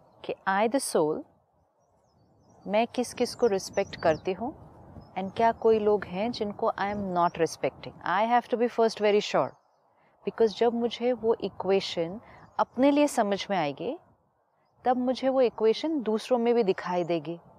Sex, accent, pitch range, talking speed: female, native, 195-240 Hz, 160 wpm